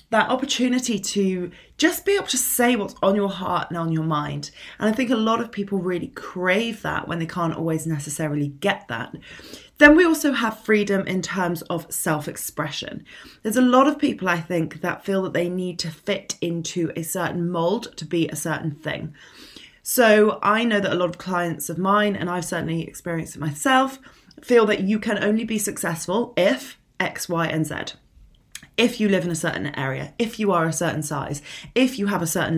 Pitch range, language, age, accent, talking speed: 165-230 Hz, English, 20-39, British, 205 wpm